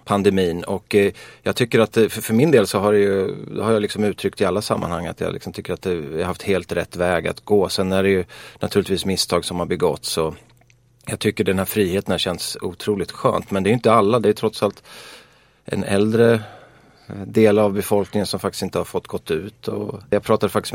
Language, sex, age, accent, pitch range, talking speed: Swedish, male, 30-49, native, 95-110 Hz, 225 wpm